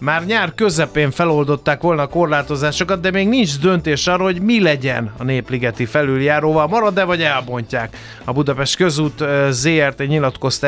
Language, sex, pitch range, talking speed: Hungarian, male, 125-165 Hz, 145 wpm